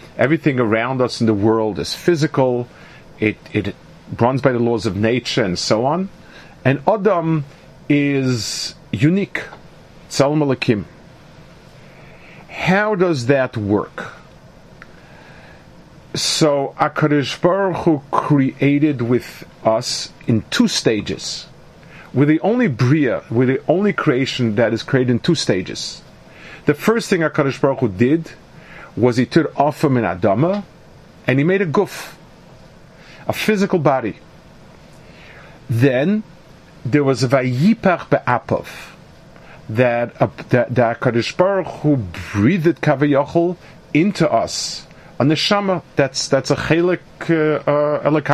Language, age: English, 50-69